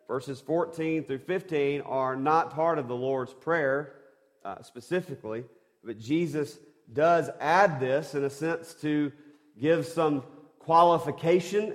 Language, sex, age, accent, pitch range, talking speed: English, male, 40-59, American, 115-155 Hz, 130 wpm